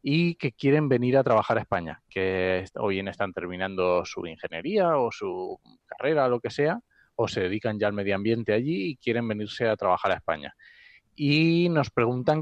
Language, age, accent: Spanish, 30-49, Spanish